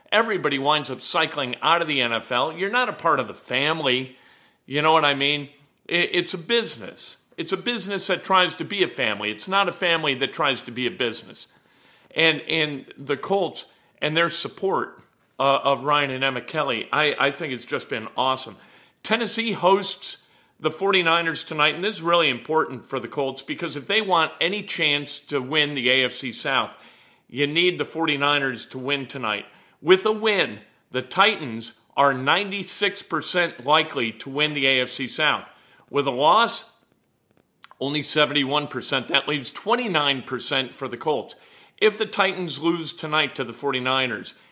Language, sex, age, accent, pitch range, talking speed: English, male, 50-69, American, 130-170 Hz, 170 wpm